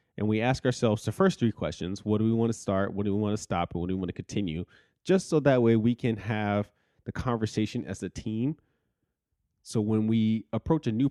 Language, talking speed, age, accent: English, 245 wpm, 30-49, American